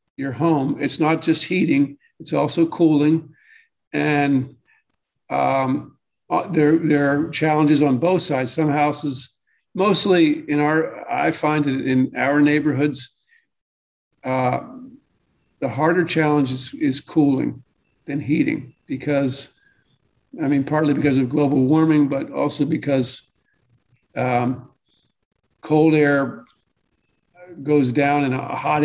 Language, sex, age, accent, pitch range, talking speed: English, male, 50-69, American, 135-160 Hz, 115 wpm